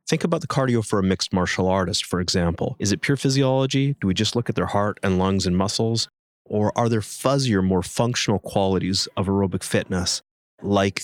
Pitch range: 90-110 Hz